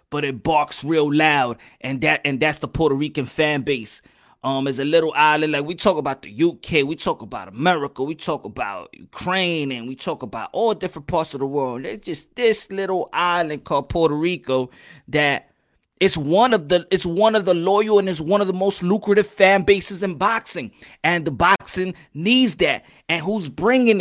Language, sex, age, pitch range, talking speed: English, male, 30-49, 155-225 Hz, 200 wpm